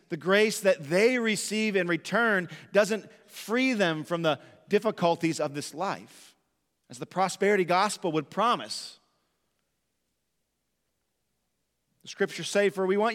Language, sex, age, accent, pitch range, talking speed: English, male, 40-59, American, 165-200 Hz, 130 wpm